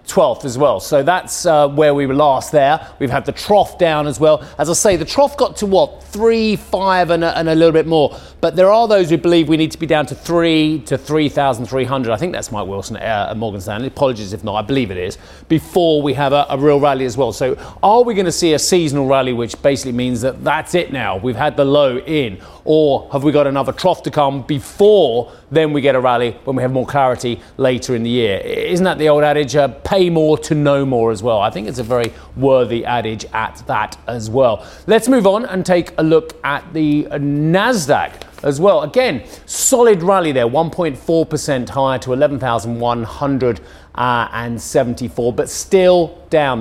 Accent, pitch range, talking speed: British, 125-160 Hz, 215 wpm